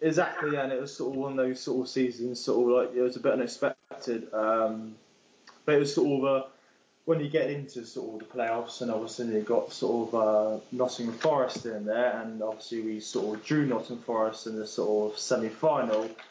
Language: English